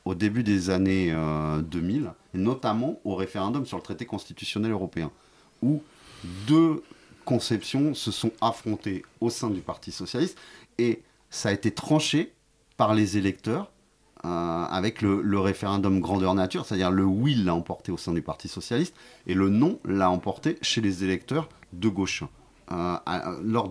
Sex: male